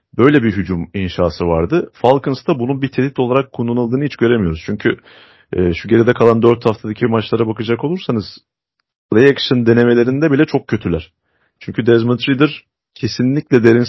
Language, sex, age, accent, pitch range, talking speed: Turkish, male, 40-59, native, 100-130 Hz, 145 wpm